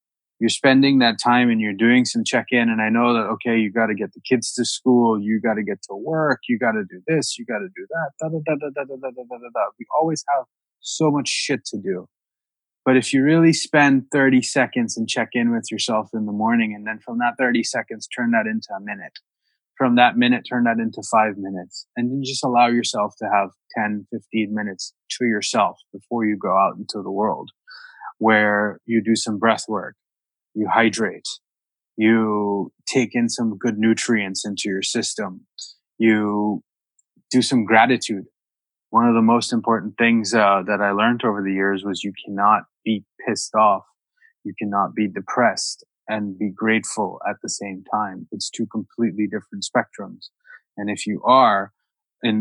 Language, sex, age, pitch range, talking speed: English, male, 20-39, 105-130 Hz, 185 wpm